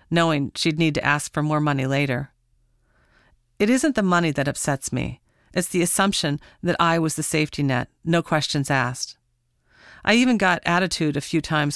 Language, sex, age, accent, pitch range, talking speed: English, female, 40-59, American, 145-175 Hz, 180 wpm